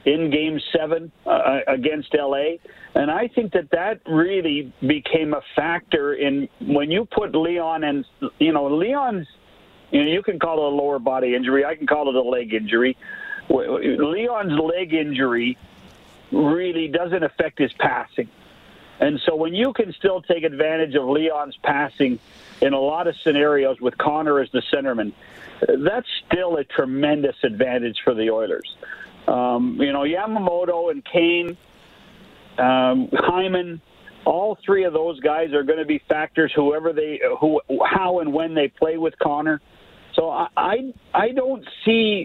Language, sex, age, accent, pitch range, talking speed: English, male, 50-69, American, 140-175 Hz, 160 wpm